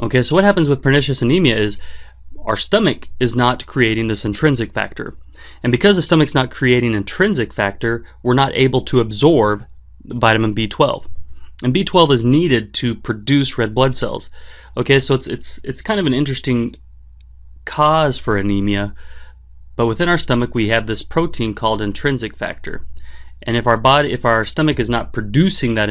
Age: 30-49